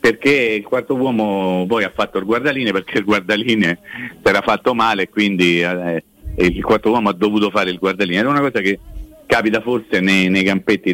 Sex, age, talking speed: male, 50-69, 190 wpm